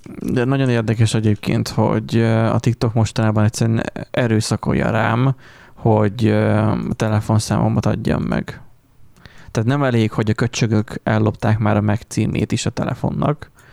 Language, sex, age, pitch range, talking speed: Hungarian, male, 20-39, 110-130 Hz, 125 wpm